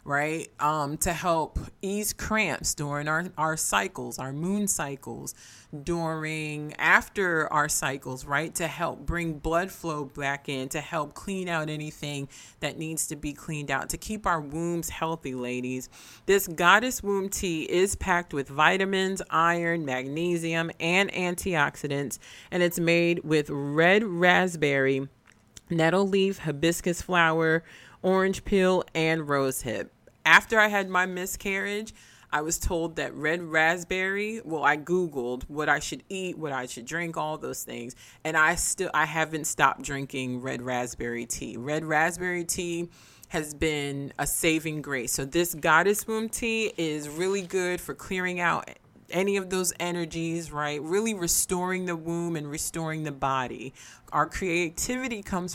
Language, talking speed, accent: English, 150 wpm, American